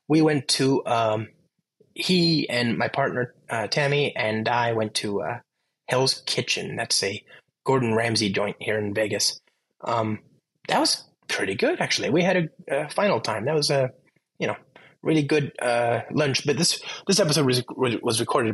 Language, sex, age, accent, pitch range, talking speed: English, male, 20-39, American, 110-150 Hz, 170 wpm